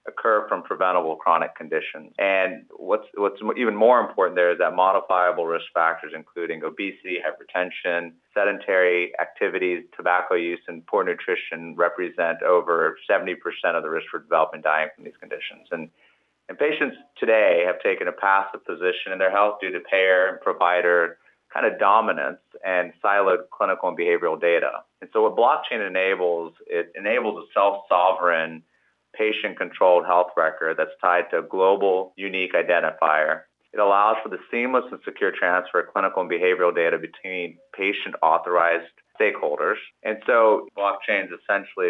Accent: American